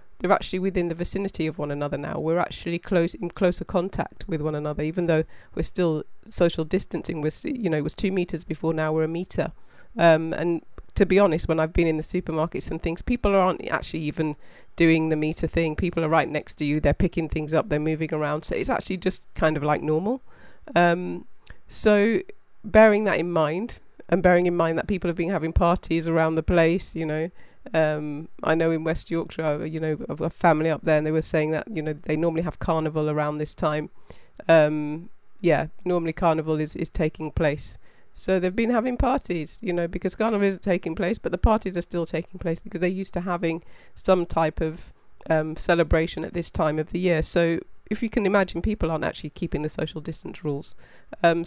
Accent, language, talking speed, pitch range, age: British, English, 210 wpm, 155-180 Hz, 30-49